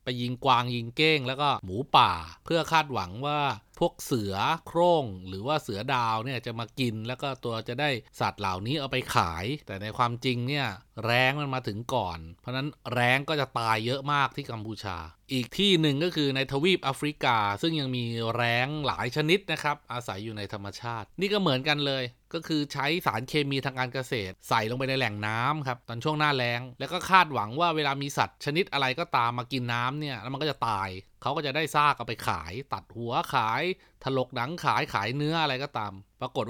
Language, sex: Thai, male